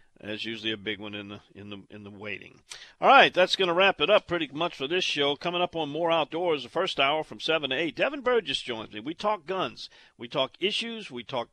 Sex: male